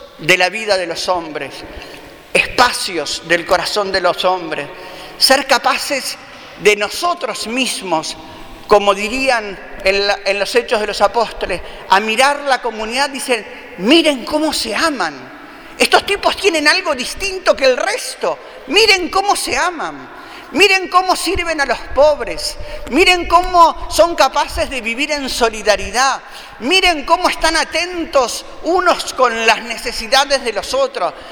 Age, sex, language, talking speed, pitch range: 50-69, male, Spanish, 140 wpm, 205-320 Hz